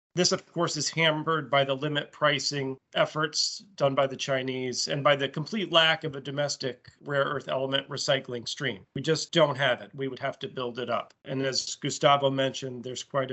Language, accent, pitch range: English, American, 135-165 Hz